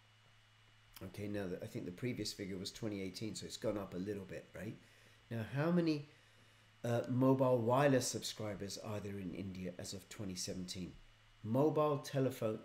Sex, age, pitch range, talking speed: male, 40-59, 110-145 Hz, 155 wpm